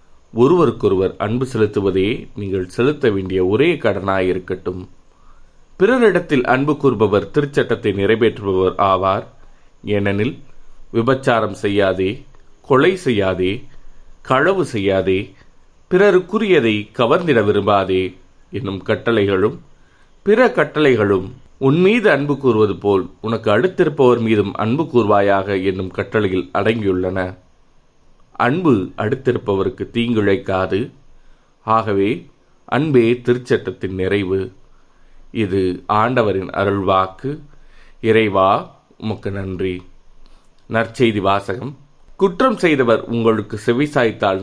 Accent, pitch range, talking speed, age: native, 95-120 Hz, 80 wpm, 30-49